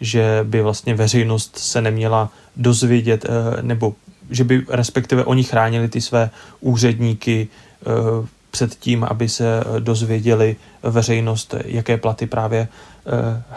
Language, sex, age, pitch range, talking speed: Czech, male, 30-49, 115-125 Hz, 120 wpm